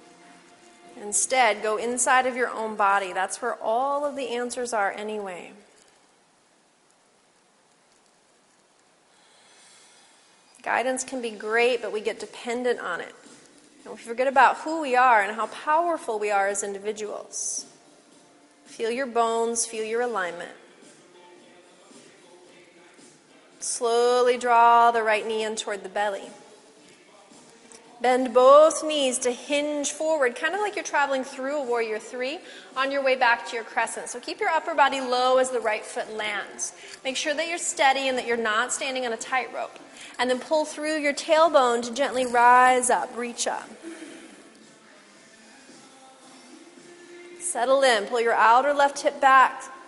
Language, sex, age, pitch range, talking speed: English, female, 30-49, 230-280 Hz, 145 wpm